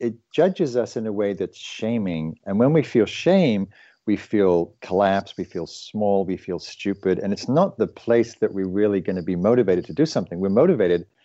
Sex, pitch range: male, 95-115 Hz